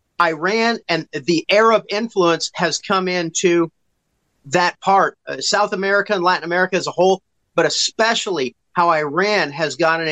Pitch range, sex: 160-195 Hz, male